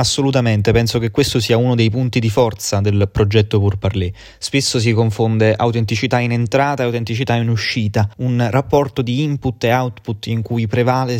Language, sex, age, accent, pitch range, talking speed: Italian, male, 20-39, native, 110-135 Hz, 170 wpm